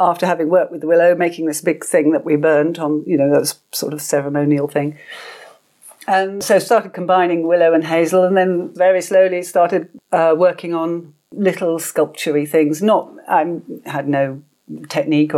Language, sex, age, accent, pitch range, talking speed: English, female, 50-69, British, 150-180 Hz, 180 wpm